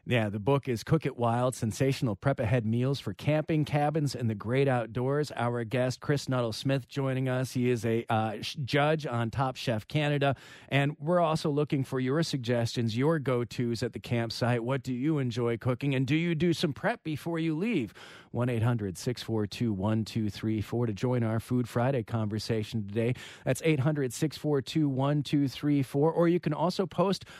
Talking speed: 160 wpm